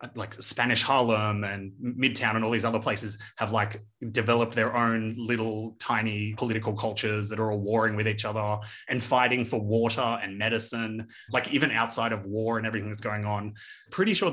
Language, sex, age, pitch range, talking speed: English, male, 20-39, 105-120 Hz, 185 wpm